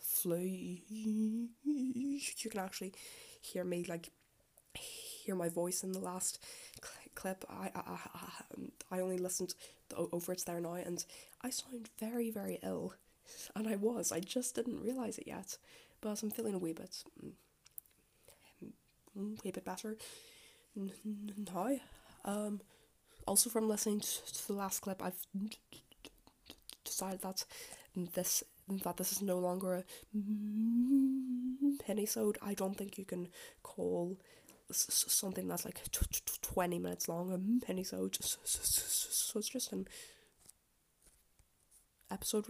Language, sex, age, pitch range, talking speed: English, female, 10-29, 185-235 Hz, 135 wpm